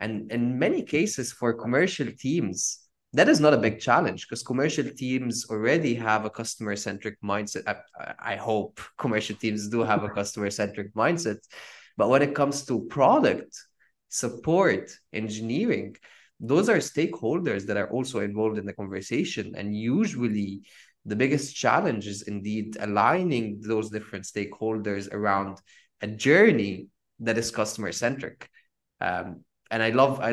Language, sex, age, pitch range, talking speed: English, male, 20-39, 100-120 Hz, 145 wpm